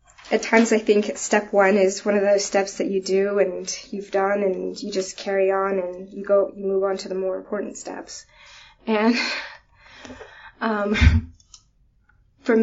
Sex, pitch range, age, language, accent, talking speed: female, 190-220 Hz, 10-29, English, American, 170 wpm